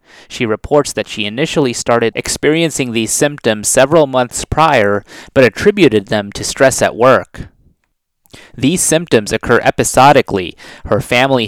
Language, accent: English, American